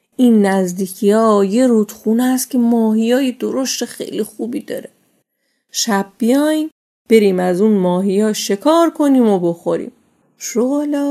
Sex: female